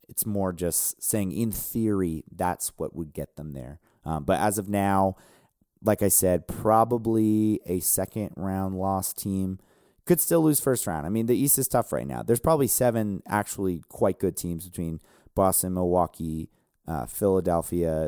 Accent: American